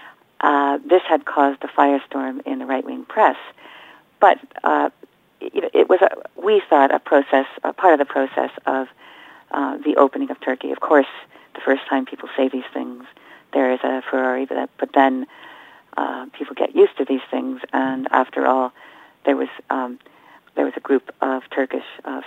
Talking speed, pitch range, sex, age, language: 180 wpm, 130-180 Hz, female, 50-69, English